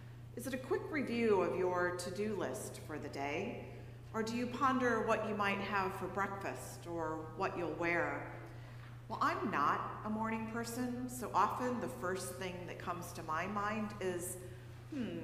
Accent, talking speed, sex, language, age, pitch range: American, 175 wpm, female, English, 40-59, 125-190 Hz